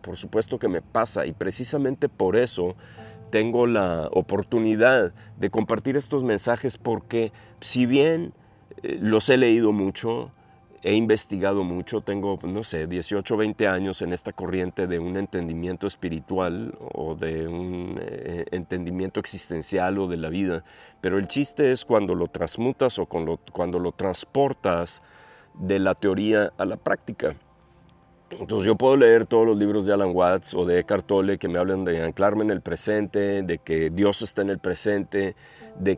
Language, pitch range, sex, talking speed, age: Spanish, 90-115 Hz, male, 160 wpm, 40-59